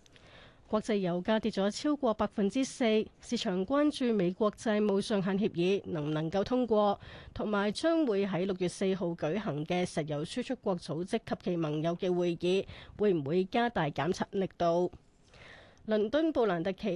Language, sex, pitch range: Chinese, female, 180-225 Hz